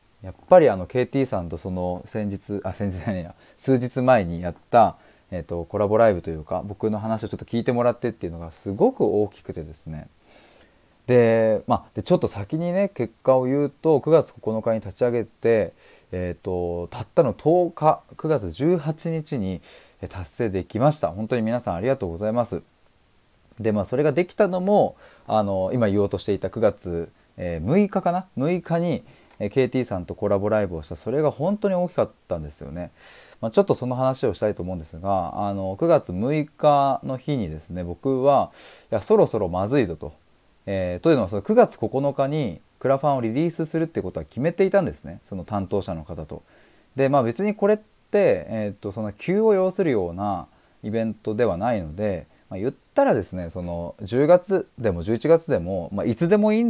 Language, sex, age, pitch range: Japanese, male, 20-39, 95-145 Hz